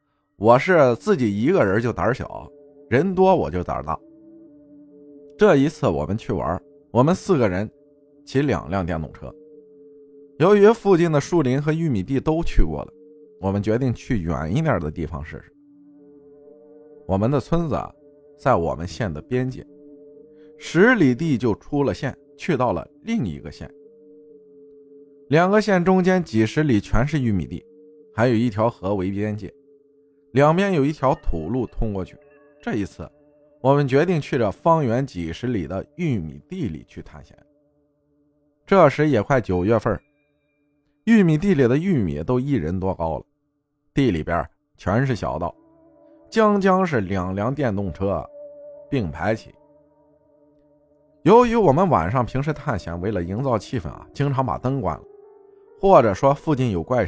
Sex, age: male, 20-39